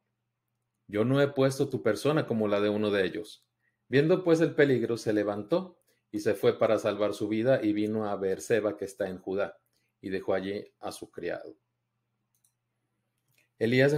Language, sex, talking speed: Spanish, male, 175 wpm